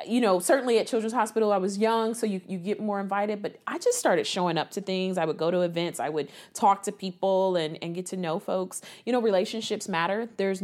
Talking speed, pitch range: 250 wpm, 180-225 Hz